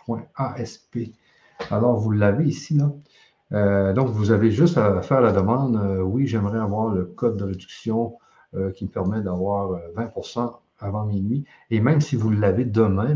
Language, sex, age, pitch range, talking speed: French, male, 50-69, 100-125 Hz, 160 wpm